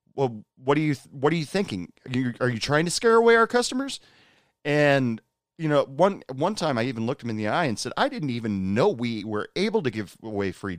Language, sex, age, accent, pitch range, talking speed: English, male, 30-49, American, 100-150 Hz, 245 wpm